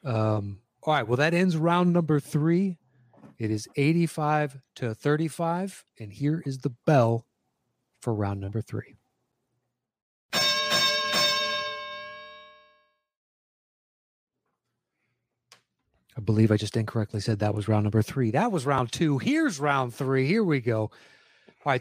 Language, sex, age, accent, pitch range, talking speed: English, male, 30-49, American, 120-160 Hz, 125 wpm